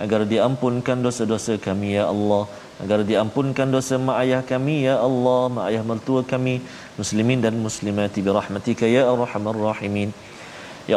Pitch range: 115-145 Hz